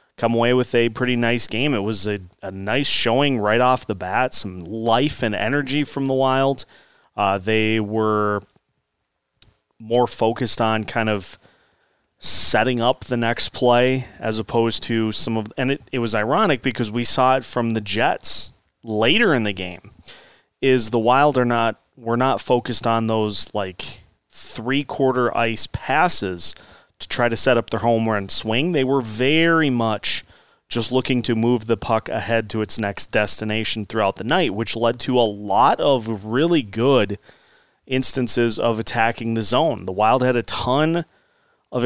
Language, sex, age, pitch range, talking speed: English, male, 30-49, 110-130 Hz, 170 wpm